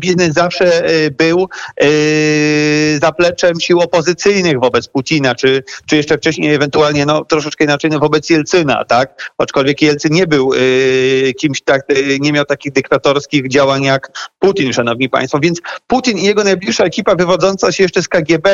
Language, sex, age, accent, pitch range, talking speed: Polish, male, 40-59, native, 155-190 Hz, 160 wpm